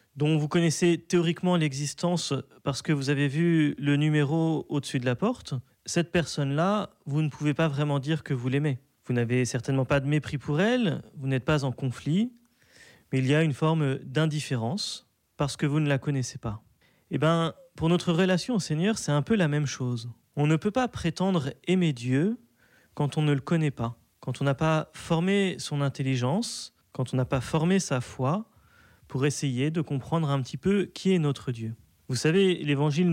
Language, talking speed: French, 195 wpm